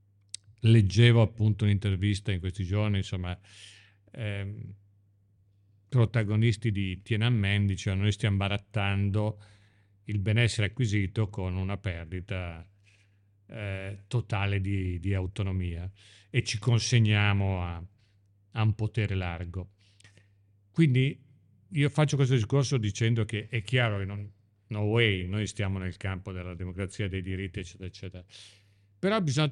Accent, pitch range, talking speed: native, 100-115 Hz, 120 wpm